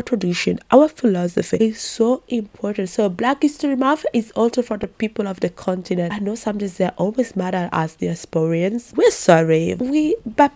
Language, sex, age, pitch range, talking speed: English, female, 20-39, 180-230 Hz, 190 wpm